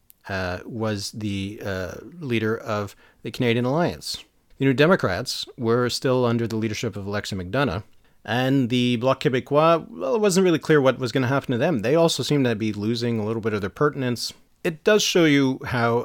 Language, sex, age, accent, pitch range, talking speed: English, male, 40-59, American, 105-130 Hz, 200 wpm